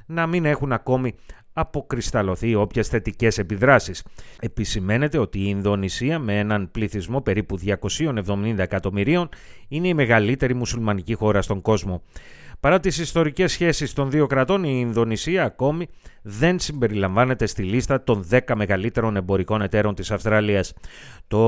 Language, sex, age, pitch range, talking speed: Greek, male, 30-49, 105-140 Hz, 130 wpm